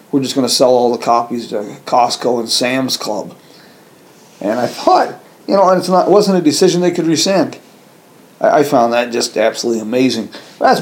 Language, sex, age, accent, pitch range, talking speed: English, male, 40-59, American, 120-150 Hz, 200 wpm